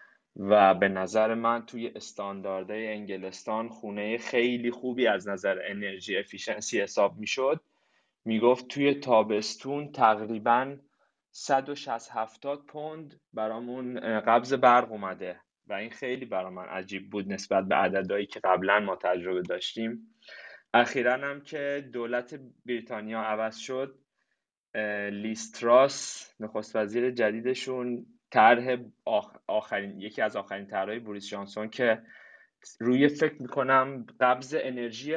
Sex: male